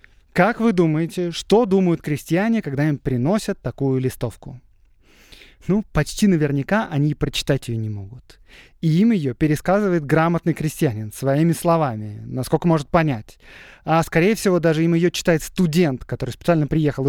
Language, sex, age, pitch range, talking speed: Russian, male, 20-39, 140-190 Hz, 145 wpm